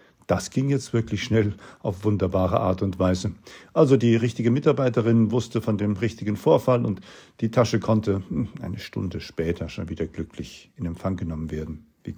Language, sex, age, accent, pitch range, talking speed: German, male, 50-69, German, 105-135 Hz, 170 wpm